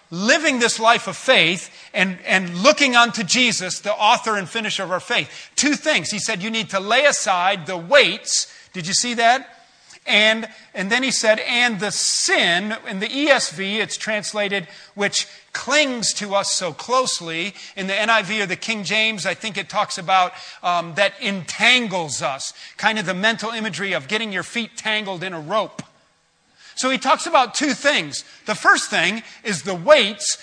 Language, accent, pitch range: English, American, 190-240 Hz